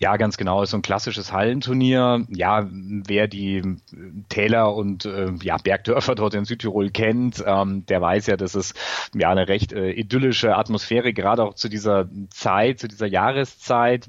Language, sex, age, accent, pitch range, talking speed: German, male, 30-49, German, 100-120 Hz, 170 wpm